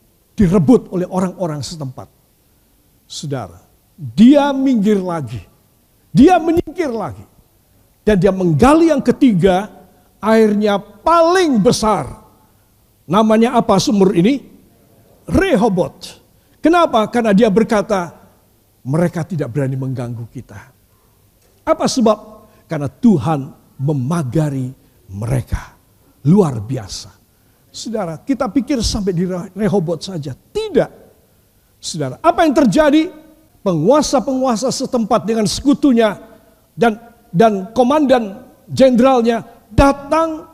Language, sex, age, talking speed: Indonesian, male, 50-69, 90 wpm